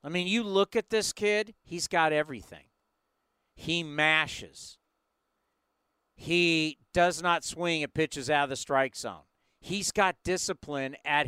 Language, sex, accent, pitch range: English, male, American, 155-225 Hz